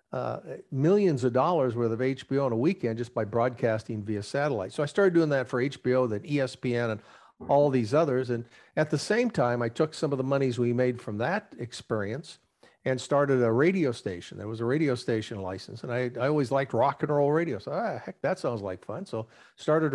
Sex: male